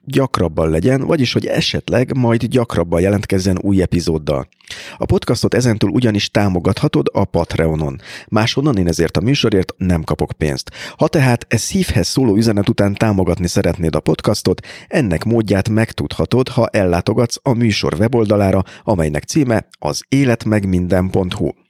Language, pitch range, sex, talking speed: Hungarian, 85-115 Hz, male, 135 wpm